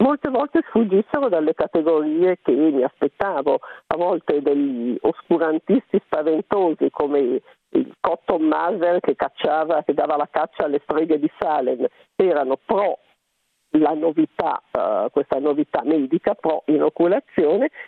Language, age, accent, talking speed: Italian, 50-69, native, 130 wpm